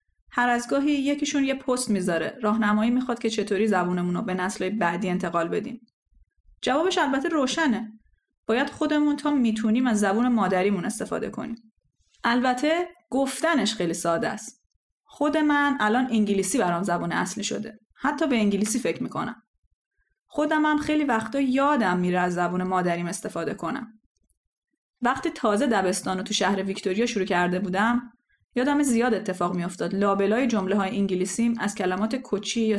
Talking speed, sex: 150 wpm, female